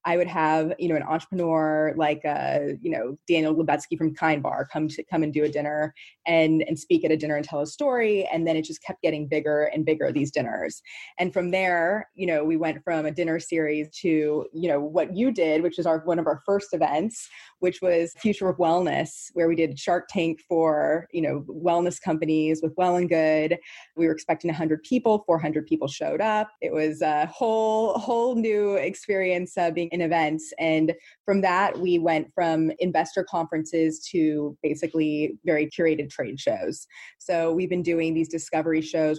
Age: 20-39